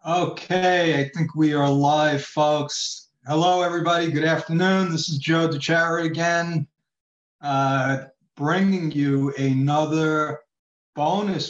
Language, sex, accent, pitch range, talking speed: English, male, American, 135-155 Hz, 110 wpm